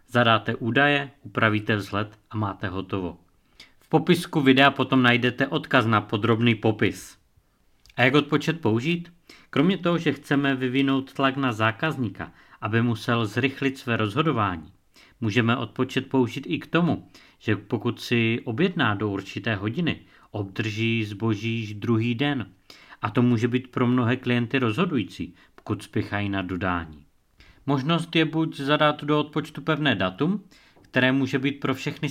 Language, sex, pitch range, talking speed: Czech, male, 110-140 Hz, 140 wpm